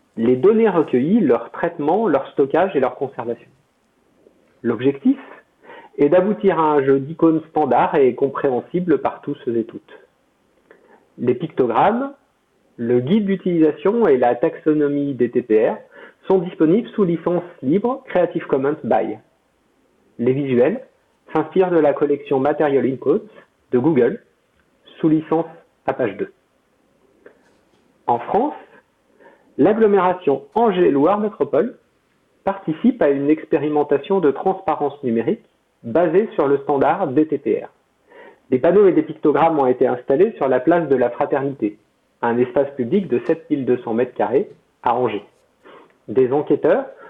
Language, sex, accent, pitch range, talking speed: French, male, French, 140-205 Hz, 120 wpm